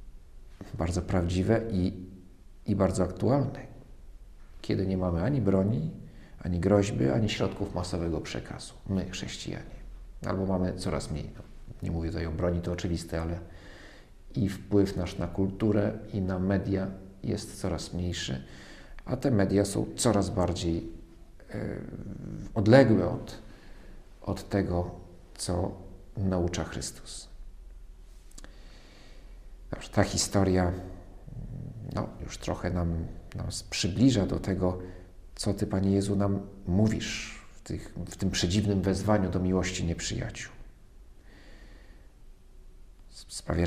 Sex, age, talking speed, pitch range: male, 50-69, 110 wpm, 90-105 Hz